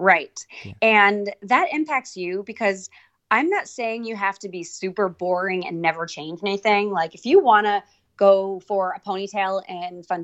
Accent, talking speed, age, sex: American, 175 wpm, 20-39, female